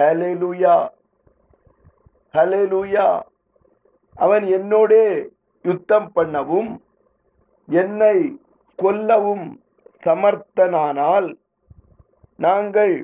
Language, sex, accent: Tamil, male, native